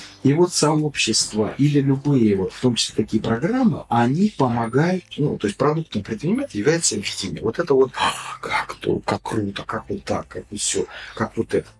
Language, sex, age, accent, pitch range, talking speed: Russian, male, 40-59, native, 110-150 Hz, 180 wpm